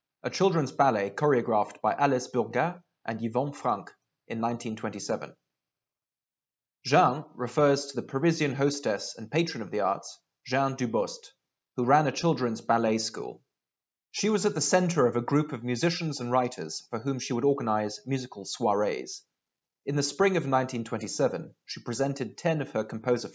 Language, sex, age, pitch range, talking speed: English, male, 30-49, 115-145 Hz, 155 wpm